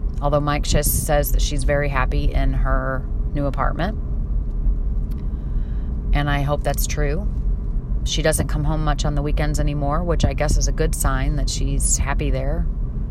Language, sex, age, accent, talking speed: English, female, 30-49, American, 170 wpm